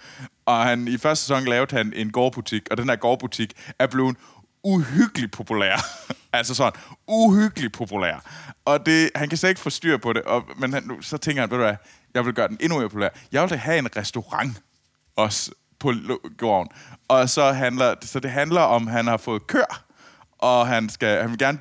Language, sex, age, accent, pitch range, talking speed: Danish, male, 20-39, native, 100-130 Hz, 210 wpm